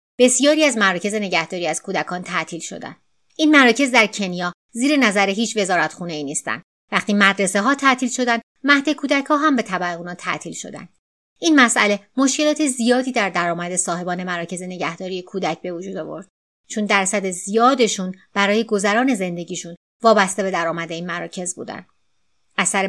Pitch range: 180-245 Hz